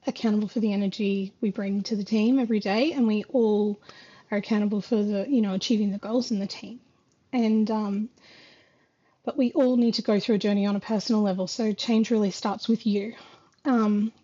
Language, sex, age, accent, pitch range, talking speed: English, female, 30-49, Australian, 215-245 Hz, 200 wpm